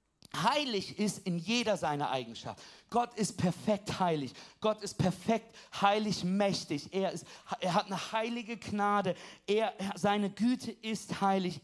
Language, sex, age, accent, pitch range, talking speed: German, male, 40-59, German, 190-235 Hz, 140 wpm